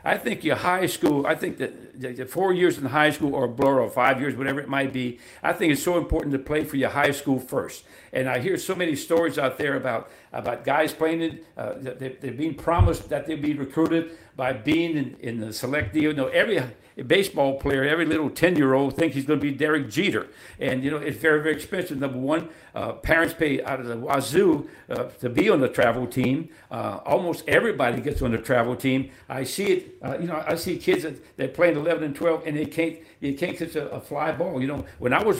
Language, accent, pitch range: English, American, 135-165 Hz